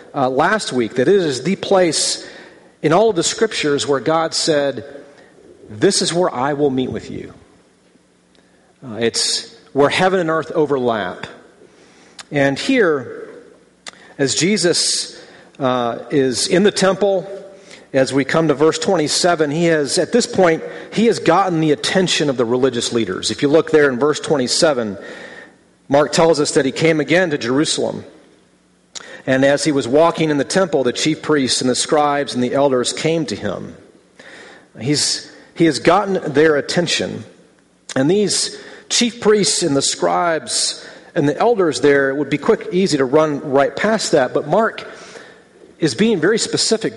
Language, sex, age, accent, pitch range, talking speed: English, male, 40-59, American, 140-190 Hz, 165 wpm